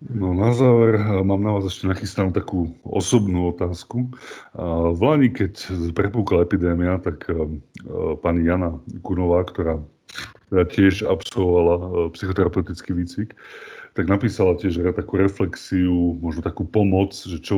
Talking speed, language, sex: 125 wpm, Slovak, male